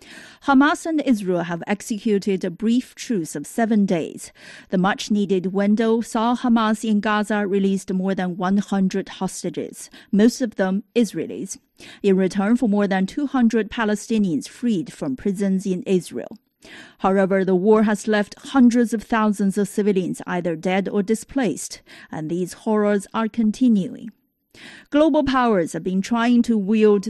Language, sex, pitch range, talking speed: English, female, 190-225 Hz, 145 wpm